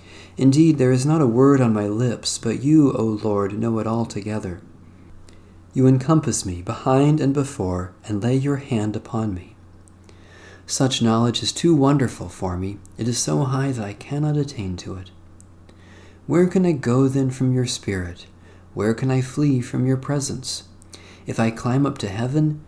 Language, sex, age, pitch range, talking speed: English, male, 40-59, 95-130 Hz, 175 wpm